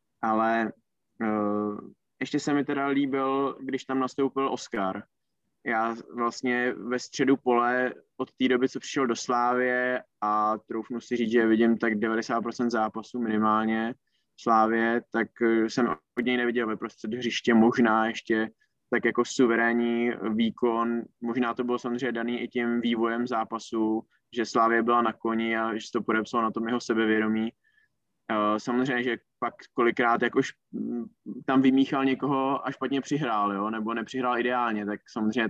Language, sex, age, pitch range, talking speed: Czech, male, 20-39, 115-130 Hz, 145 wpm